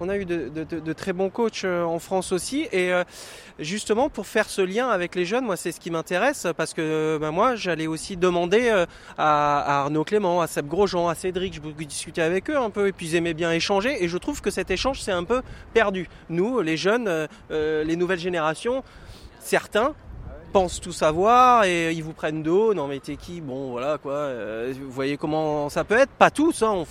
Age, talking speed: 20-39, 225 wpm